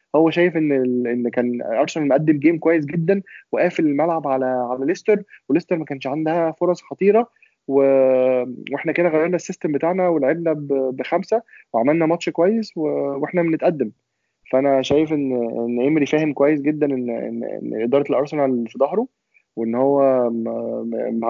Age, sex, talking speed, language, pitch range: 20-39, male, 155 wpm, Arabic, 125-165 Hz